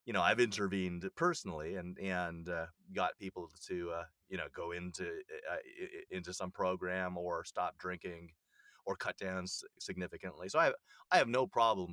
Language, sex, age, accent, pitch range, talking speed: English, male, 30-49, American, 85-100 Hz, 170 wpm